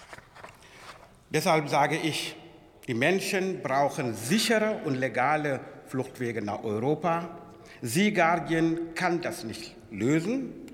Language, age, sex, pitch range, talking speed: German, 60-79, male, 115-165 Hz, 100 wpm